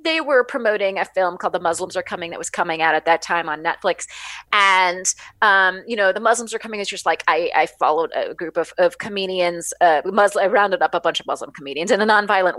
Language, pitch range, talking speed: English, 180-265 Hz, 245 wpm